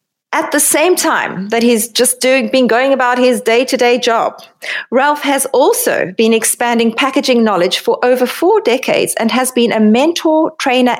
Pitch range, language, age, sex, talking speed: 210-275 Hz, English, 30-49, female, 170 wpm